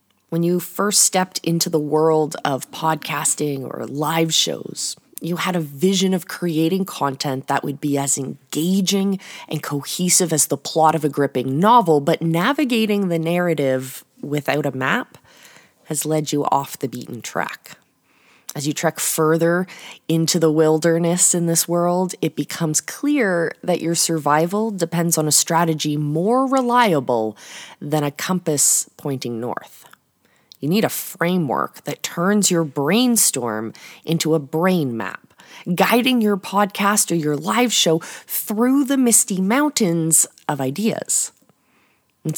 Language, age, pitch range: English, 20-39, 150-205 Hz